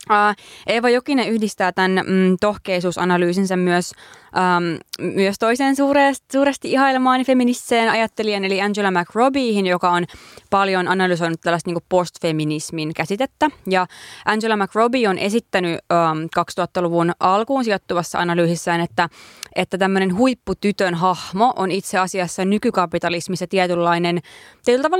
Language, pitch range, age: Finnish, 170-205 Hz, 20-39